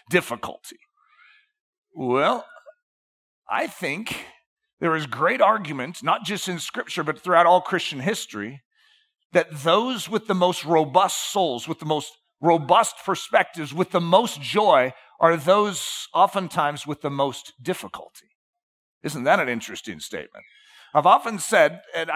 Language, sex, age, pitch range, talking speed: English, male, 50-69, 135-185 Hz, 135 wpm